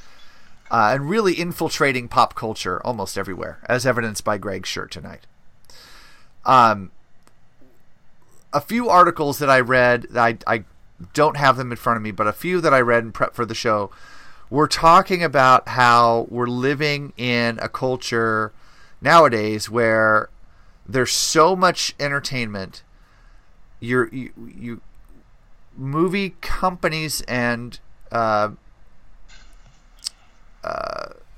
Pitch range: 110-140 Hz